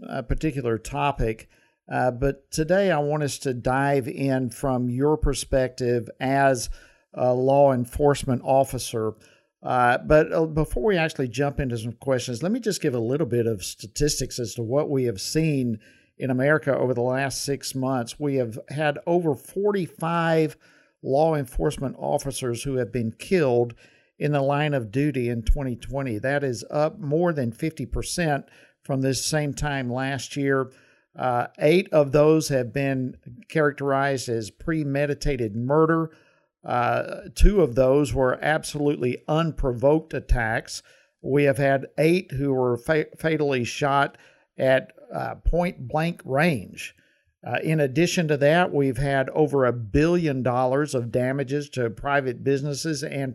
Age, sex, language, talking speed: 50-69, male, English, 145 wpm